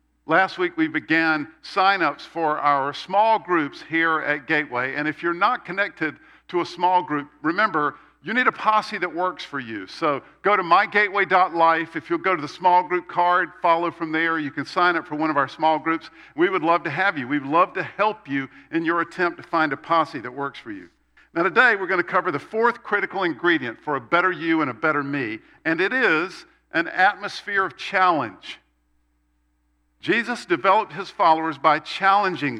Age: 50-69